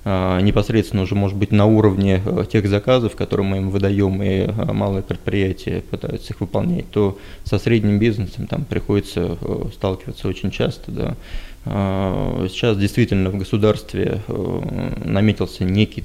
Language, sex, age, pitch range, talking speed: Russian, male, 20-39, 95-110 Hz, 125 wpm